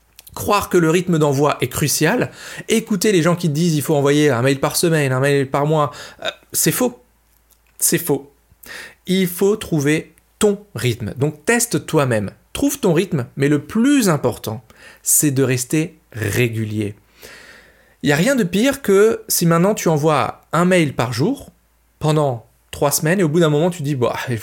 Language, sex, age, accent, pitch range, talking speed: French, male, 40-59, French, 125-195 Hz, 185 wpm